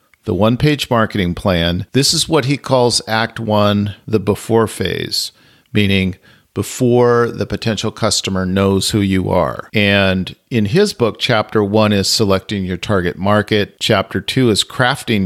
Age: 50-69